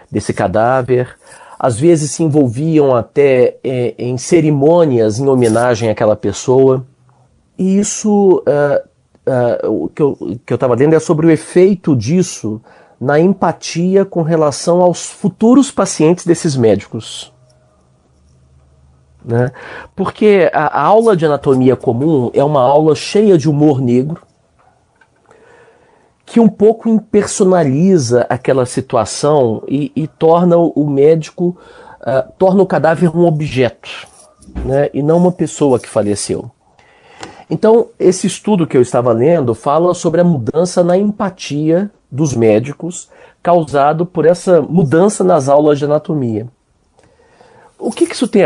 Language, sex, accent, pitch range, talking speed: Portuguese, male, Brazilian, 125-180 Hz, 130 wpm